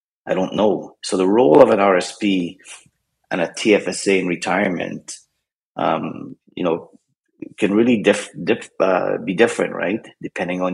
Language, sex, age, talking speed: English, male, 30-49, 140 wpm